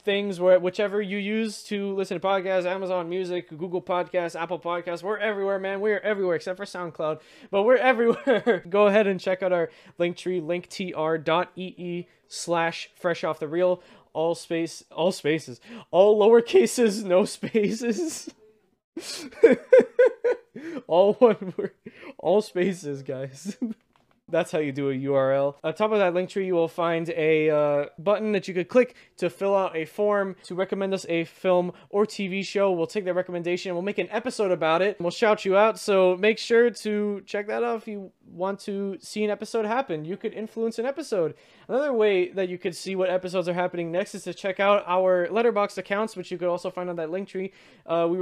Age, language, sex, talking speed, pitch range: 20-39, English, male, 190 wpm, 175-210 Hz